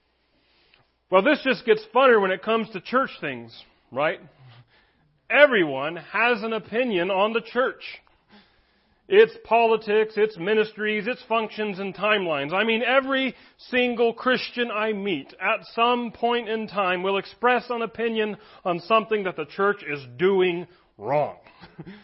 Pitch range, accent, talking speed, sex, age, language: 170-225 Hz, American, 140 wpm, male, 40-59, English